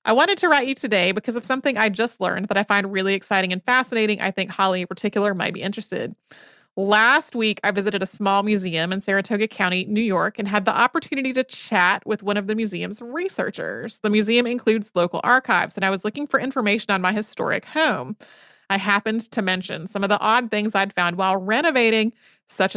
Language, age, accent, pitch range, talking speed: English, 30-49, American, 195-245 Hz, 210 wpm